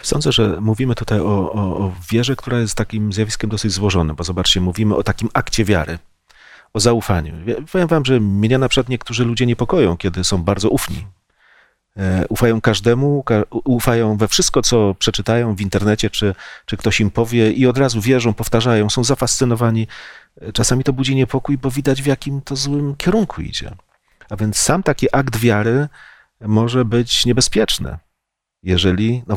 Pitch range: 95-120 Hz